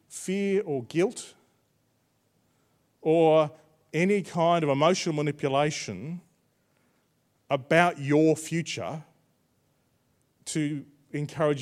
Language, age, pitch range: English, 40-59, 160-215 Hz